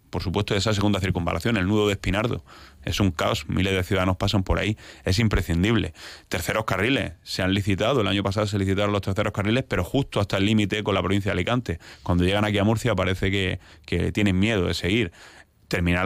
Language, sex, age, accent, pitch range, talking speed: Spanish, male, 30-49, Spanish, 90-105 Hz, 210 wpm